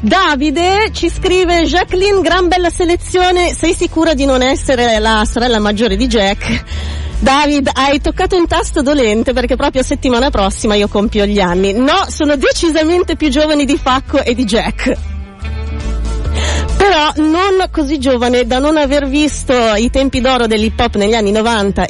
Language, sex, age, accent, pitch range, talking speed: Italian, female, 30-49, native, 210-300 Hz, 160 wpm